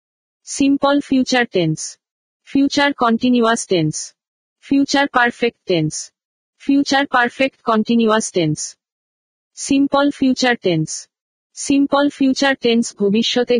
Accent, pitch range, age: native, 210-255 Hz, 50-69